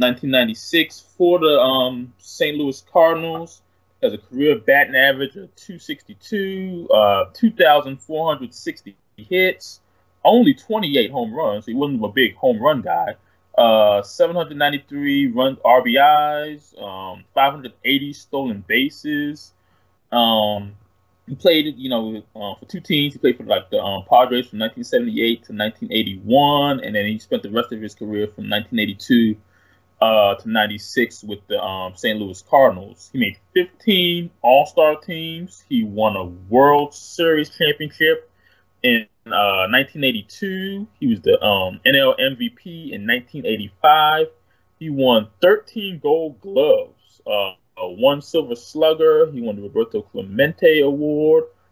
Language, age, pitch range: English, 20-39, 105-175 Hz